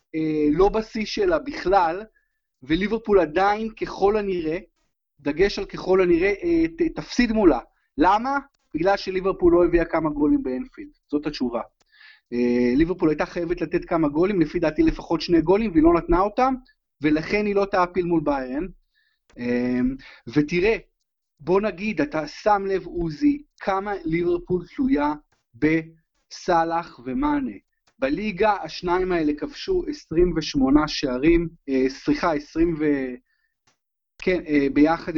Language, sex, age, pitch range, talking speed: Hebrew, male, 30-49, 155-230 Hz, 115 wpm